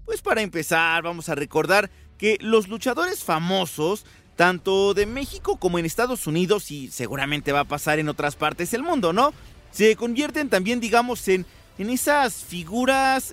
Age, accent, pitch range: 40-59, Mexican, 145-230 Hz